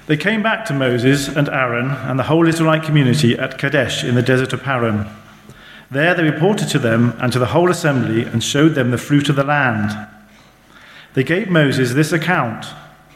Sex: male